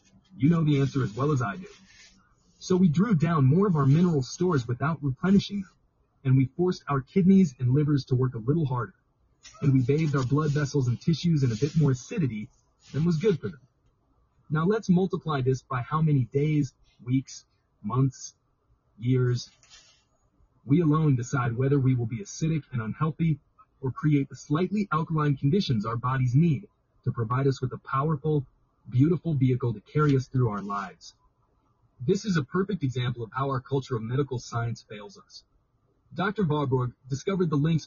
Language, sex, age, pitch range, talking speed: English, male, 30-49, 125-160 Hz, 180 wpm